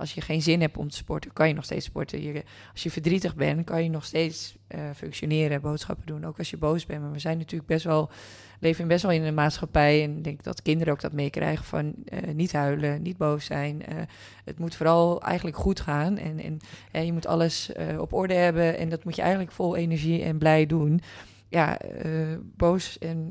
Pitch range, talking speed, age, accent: 150-170 Hz, 230 wpm, 20-39, Dutch